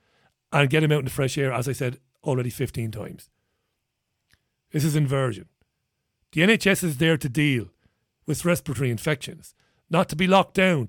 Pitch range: 135-195 Hz